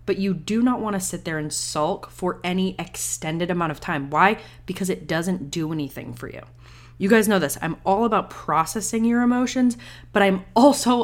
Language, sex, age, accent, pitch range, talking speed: English, female, 20-39, American, 150-195 Hz, 200 wpm